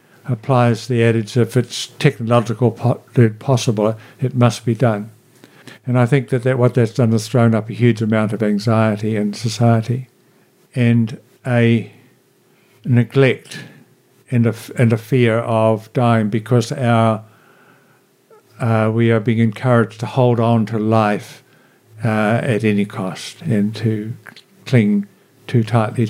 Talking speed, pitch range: 135 wpm, 110-130 Hz